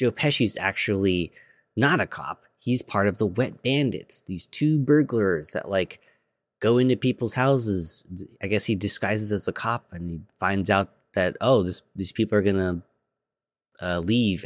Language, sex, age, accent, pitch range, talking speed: English, male, 30-49, American, 90-115 Hz, 170 wpm